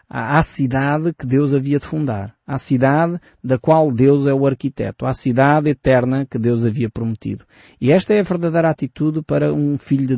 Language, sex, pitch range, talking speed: Portuguese, male, 125-160 Hz, 190 wpm